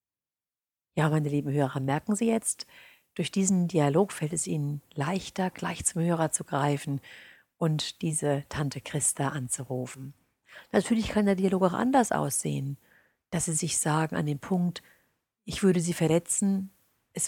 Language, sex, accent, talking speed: German, female, German, 150 wpm